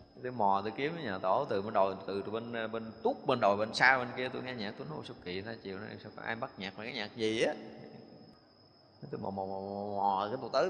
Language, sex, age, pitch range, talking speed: Vietnamese, male, 20-39, 110-145 Hz, 250 wpm